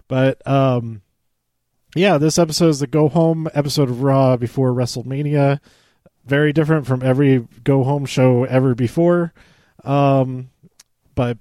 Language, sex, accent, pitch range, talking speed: English, male, American, 120-150 Hz, 130 wpm